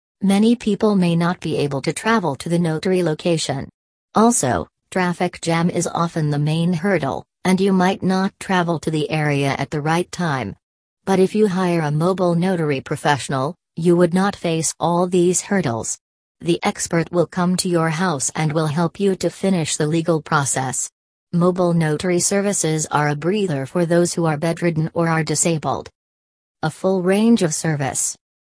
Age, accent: 40-59, American